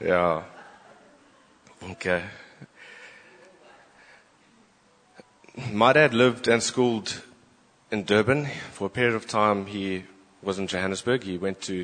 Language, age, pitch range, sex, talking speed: English, 20-39, 90-105 Hz, male, 105 wpm